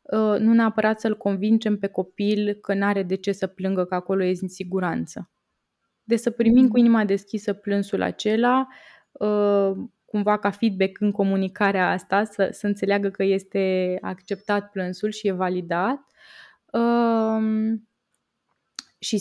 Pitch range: 190-220 Hz